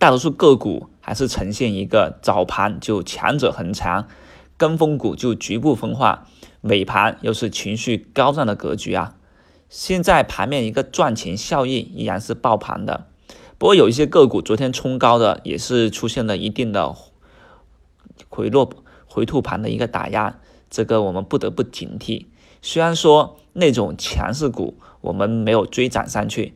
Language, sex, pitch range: Chinese, male, 105-140 Hz